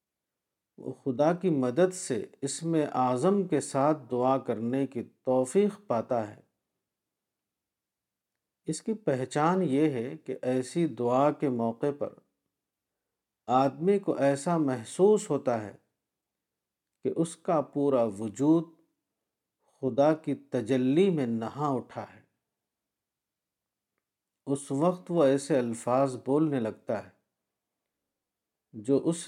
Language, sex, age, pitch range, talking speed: Urdu, male, 50-69, 120-155 Hz, 115 wpm